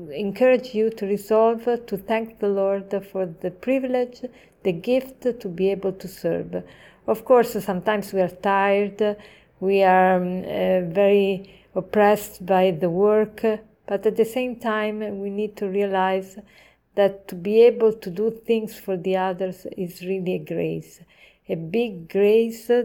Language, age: English, 50-69